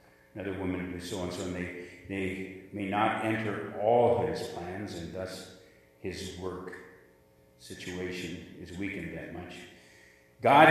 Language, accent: English, American